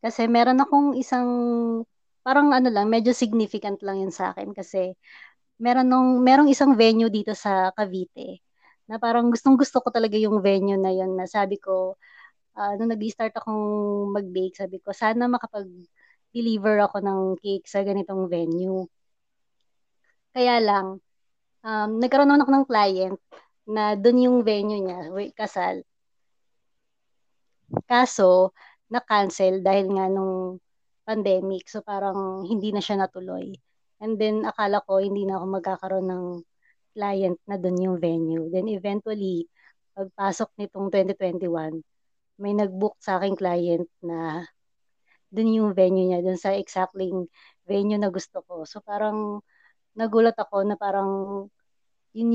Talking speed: 135 wpm